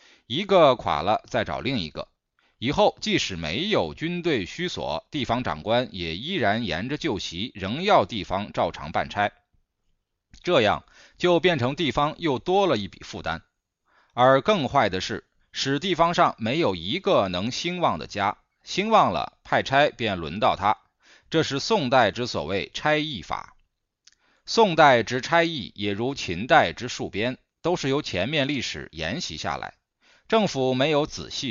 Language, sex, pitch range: Chinese, male, 115-170 Hz